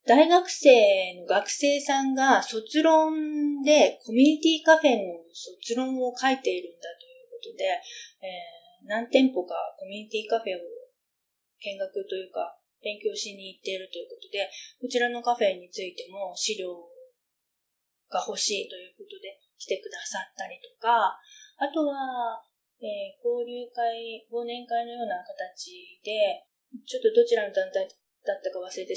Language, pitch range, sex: Japanese, 200-300 Hz, female